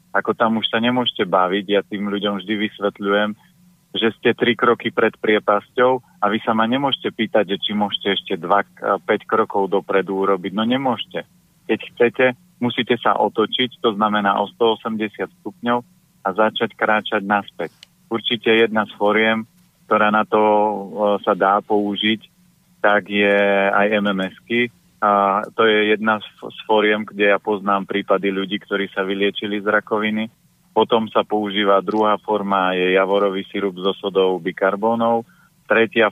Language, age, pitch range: Slovak, 30-49, 100-115 Hz